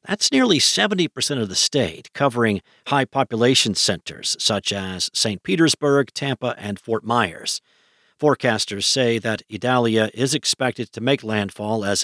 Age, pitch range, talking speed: 50-69, 110-140 Hz, 145 wpm